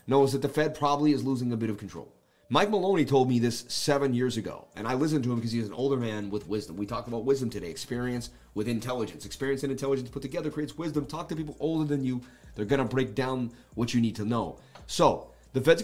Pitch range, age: 115-145 Hz, 30-49